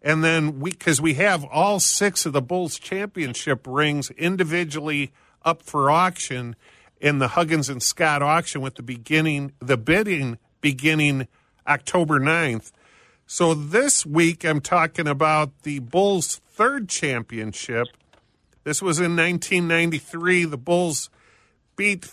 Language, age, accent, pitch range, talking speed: English, 50-69, American, 140-180 Hz, 130 wpm